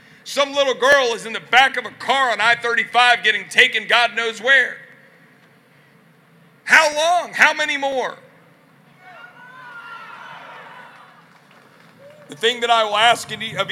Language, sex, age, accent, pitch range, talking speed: English, male, 40-59, American, 190-240 Hz, 125 wpm